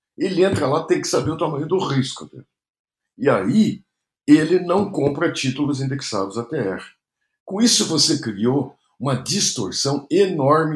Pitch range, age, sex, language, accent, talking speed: 120-160 Hz, 60-79, male, Portuguese, Brazilian, 150 wpm